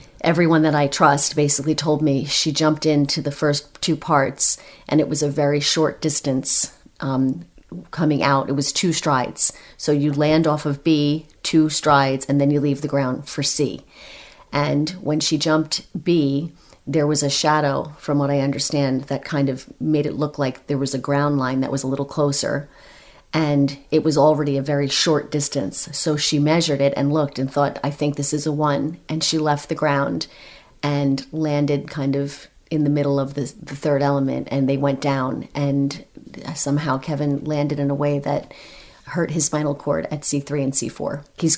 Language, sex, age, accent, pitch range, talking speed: English, female, 40-59, American, 140-155 Hz, 195 wpm